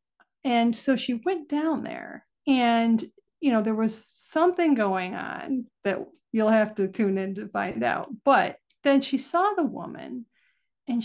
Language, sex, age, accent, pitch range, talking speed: English, female, 40-59, American, 210-265 Hz, 165 wpm